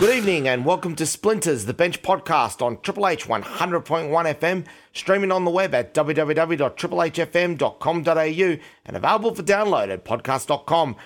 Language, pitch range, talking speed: English, 150-190 Hz, 140 wpm